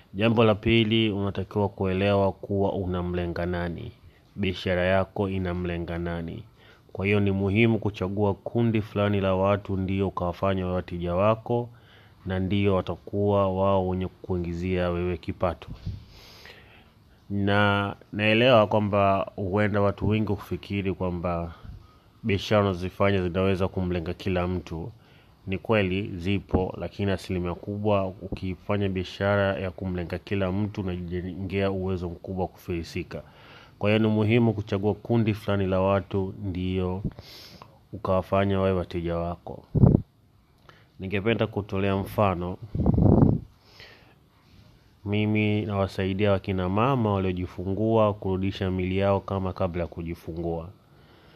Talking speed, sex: 105 wpm, male